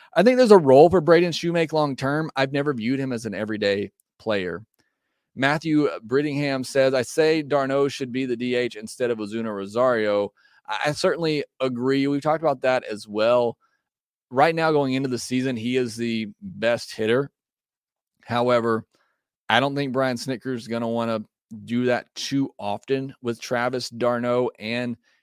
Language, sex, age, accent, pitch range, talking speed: English, male, 30-49, American, 110-135 Hz, 170 wpm